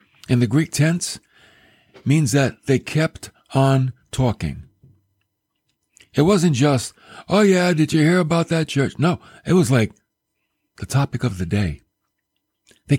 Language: English